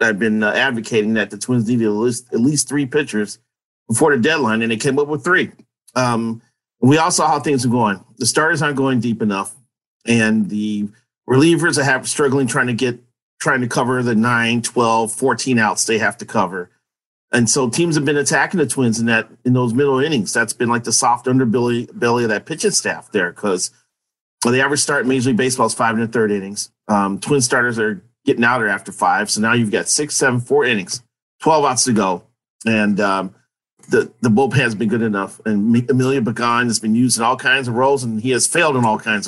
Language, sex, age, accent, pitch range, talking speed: English, male, 40-59, American, 110-130 Hz, 225 wpm